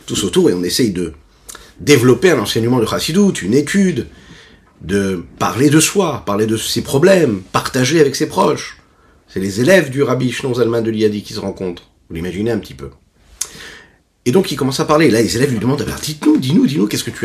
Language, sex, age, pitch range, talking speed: French, male, 30-49, 110-155 Hz, 210 wpm